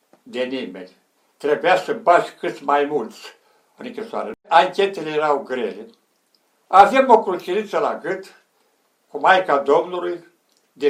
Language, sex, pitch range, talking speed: Romanian, male, 170-210 Hz, 120 wpm